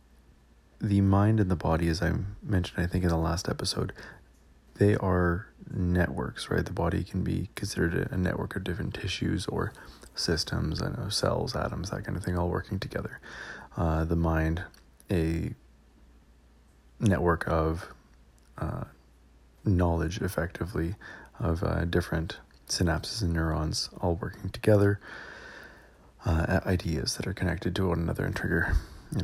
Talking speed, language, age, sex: 140 wpm, English, 30-49, male